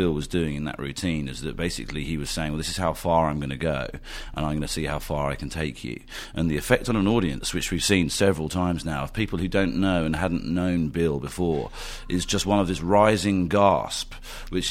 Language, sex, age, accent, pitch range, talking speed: English, male, 40-59, British, 75-90 Hz, 255 wpm